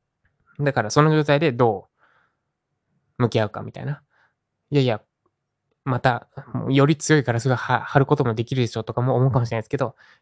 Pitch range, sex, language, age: 115-145 Hz, male, Japanese, 20-39